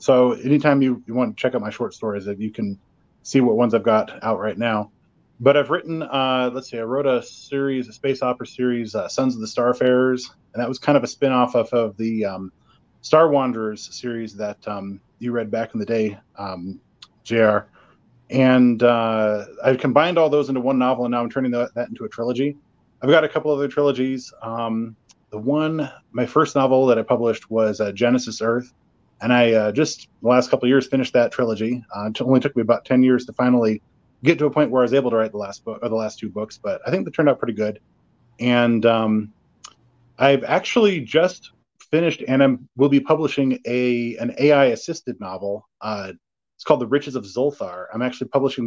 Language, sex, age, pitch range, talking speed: English, male, 30-49, 110-130 Hz, 215 wpm